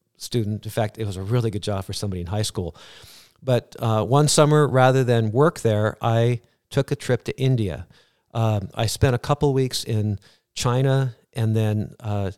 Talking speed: 185 wpm